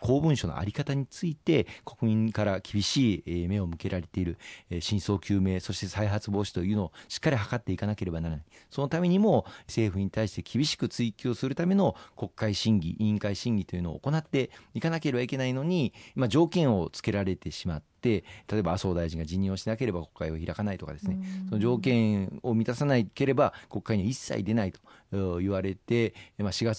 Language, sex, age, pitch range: Japanese, male, 40-59, 95-130 Hz